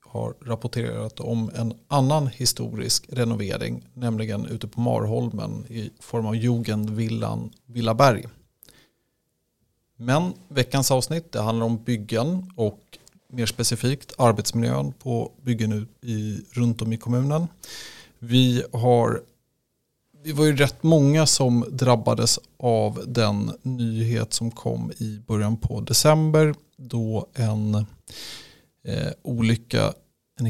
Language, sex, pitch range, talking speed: Swedish, male, 110-130 Hz, 110 wpm